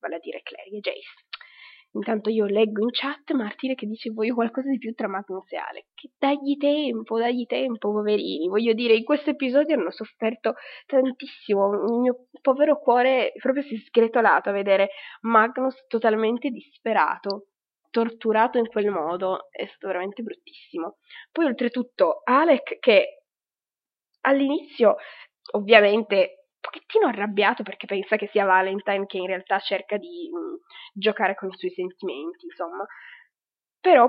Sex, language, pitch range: female, Italian, 205-265 Hz